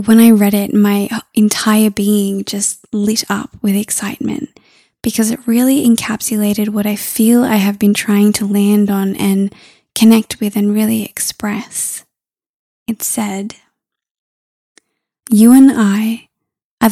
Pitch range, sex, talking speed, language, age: 200-225 Hz, female, 135 wpm, English, 20-39